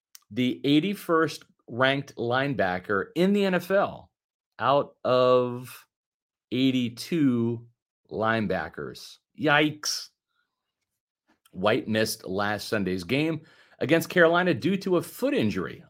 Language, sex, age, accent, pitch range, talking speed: English, male, 40-59, American, 110-160 Hz, 85 wpm